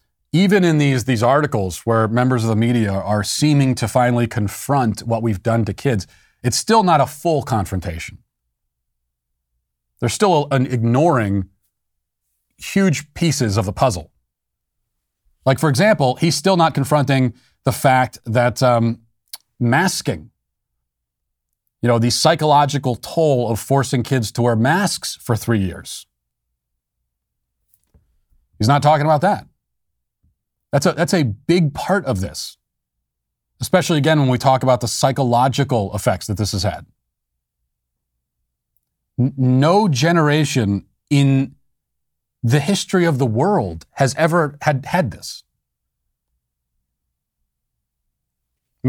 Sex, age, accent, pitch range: male, 30-49, American, 95-150 Hz